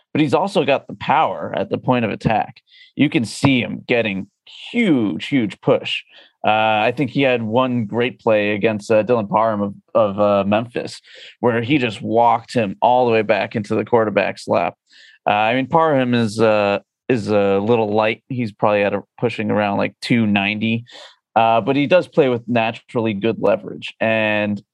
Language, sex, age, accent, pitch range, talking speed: English, male, 30-49, American, 110-130 Hz, 185 wpm